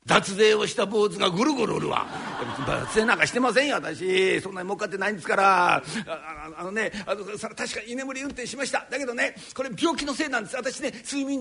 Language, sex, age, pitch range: Japanese, male, 50-69, 180-265 Hz